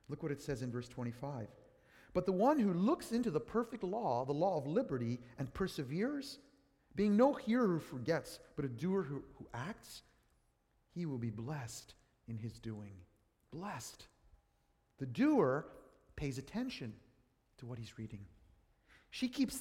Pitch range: 130-220 Hz